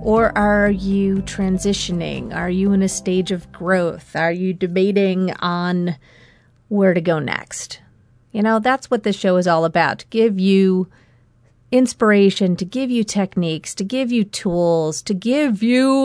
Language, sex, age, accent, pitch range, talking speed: English, female, 40-59, American, 160-215 Hz, 160 wpm